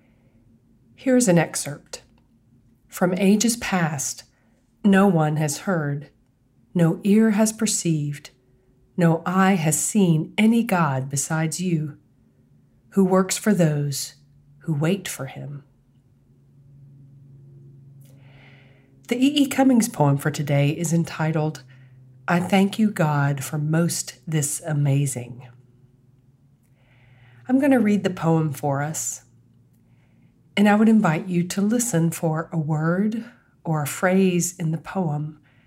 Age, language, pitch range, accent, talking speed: 40-59, English, 125-180 Hz, American, 120 wpm